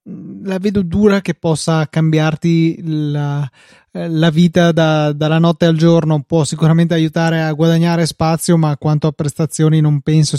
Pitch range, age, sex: 155-170 Hz, 20-39, male